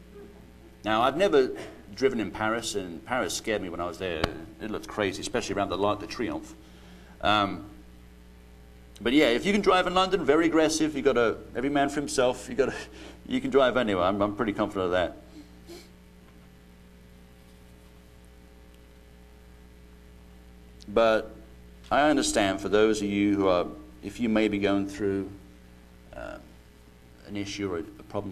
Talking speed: 155 wpm